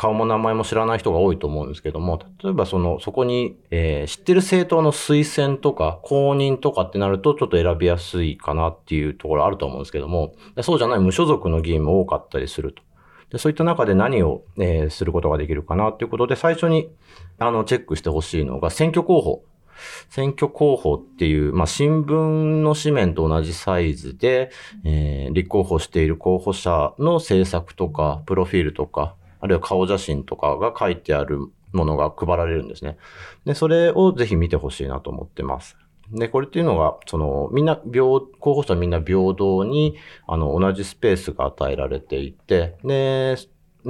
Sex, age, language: male, 40-59, Japanese